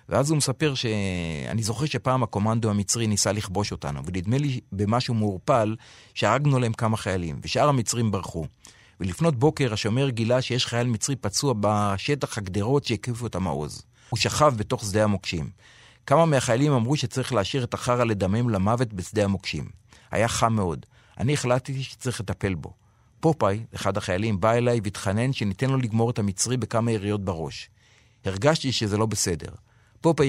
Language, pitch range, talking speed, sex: Hebrew, 100-130 Hz, 145 wpm, male